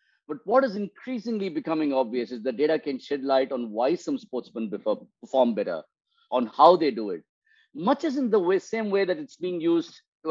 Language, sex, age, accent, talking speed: English, male, 50-69, Indian, 205 wpm